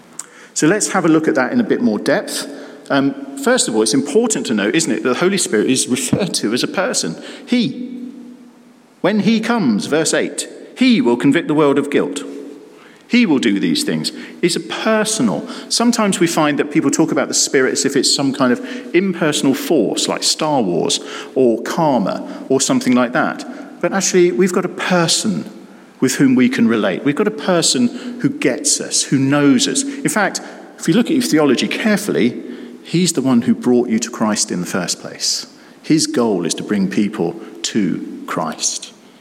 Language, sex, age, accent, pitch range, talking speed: English, male, 50-69, British, 145-245 Hz, 195 wpm